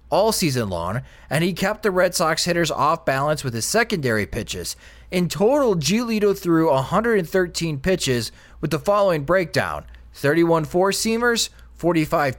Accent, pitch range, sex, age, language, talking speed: American, 140-190 Hz, male, 20-39, English, 135 wpm